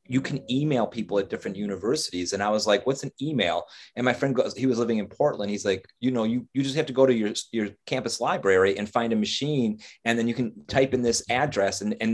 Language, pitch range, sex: English, 105-130 Hz, male